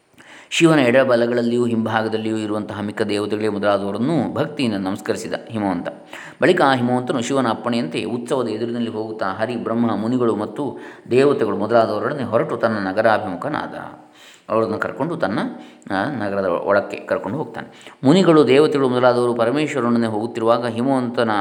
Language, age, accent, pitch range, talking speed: Kannada, 20-39, native, 110-125 Hz, 110 wpm